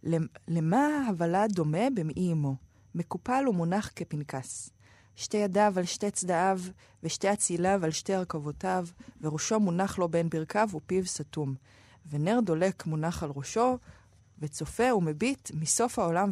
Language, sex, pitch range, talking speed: Hebrew, female, 150-200 Hz, 125 wpm